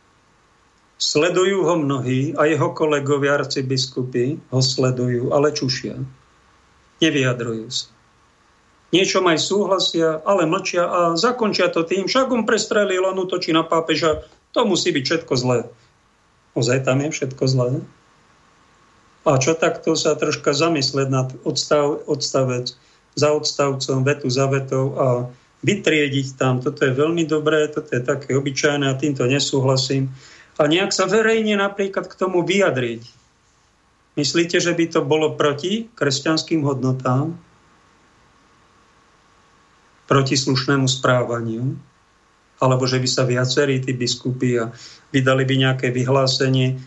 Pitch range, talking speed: 130-160 Hz, 125 wpm